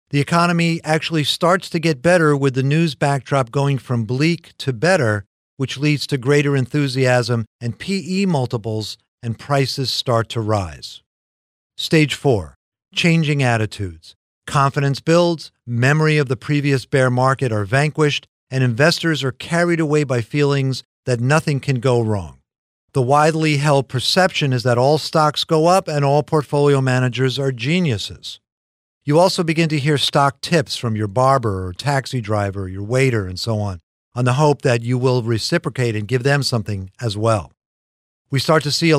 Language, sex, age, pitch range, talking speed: English, male, 50-69, 120-150 Hz, 165 wpm